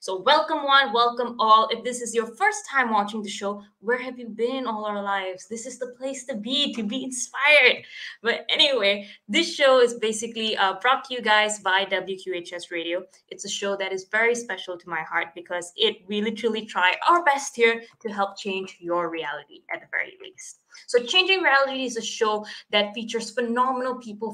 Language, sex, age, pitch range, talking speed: English, female, 20-39, 200-265 Hz, 200 wpm